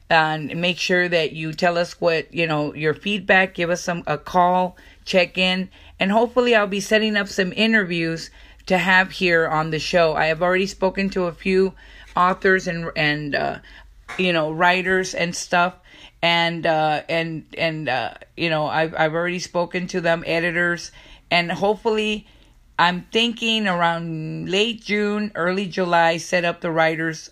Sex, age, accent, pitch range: female, 40-59, American, 165-190 Hz